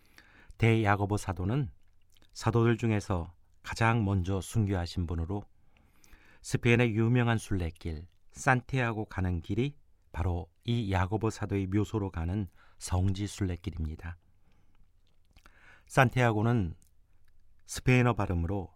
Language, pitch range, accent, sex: Korean, 85-110 Hz, native, male